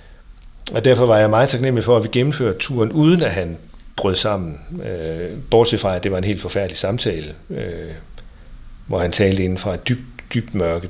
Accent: native